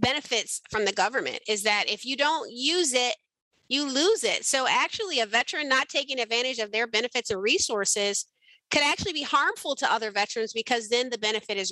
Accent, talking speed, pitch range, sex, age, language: American, 195 wpm, 215-275 Hz, female, 30-49, English